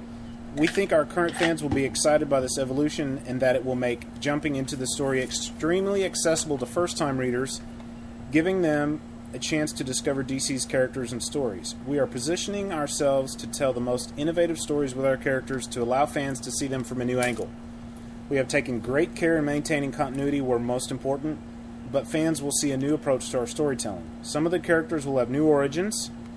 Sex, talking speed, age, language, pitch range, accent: male, 200 wpm, 30-49, English, 120-145 Hz, American